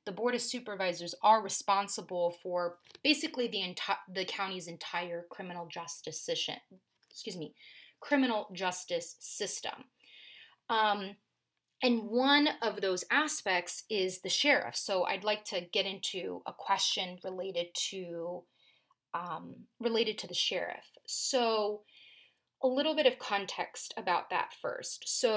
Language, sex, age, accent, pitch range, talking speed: English, female, 30-49, American, 185-235 Hz, 130 wpm